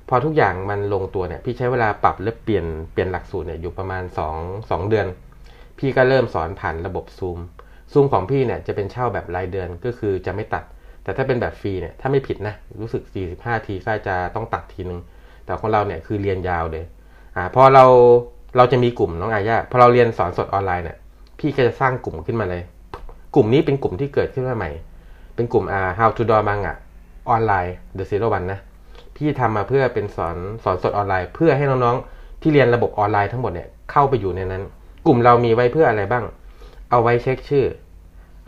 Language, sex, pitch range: Thai, male, 90-120 Hz